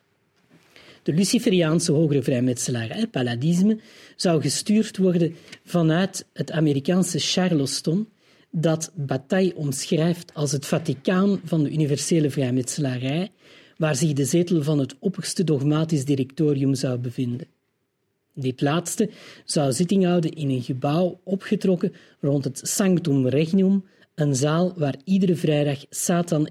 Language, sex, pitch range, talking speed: Dutch, male, 140-175 Hz, 120 wpm